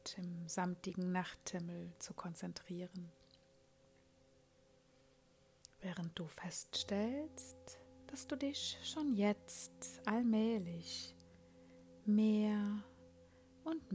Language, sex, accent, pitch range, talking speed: German, female, German, 130-200 Hz, 70 wpm